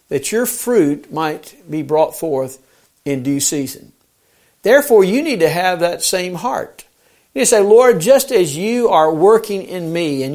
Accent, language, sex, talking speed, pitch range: American, English, male, 170 wpm, 145-205 Hz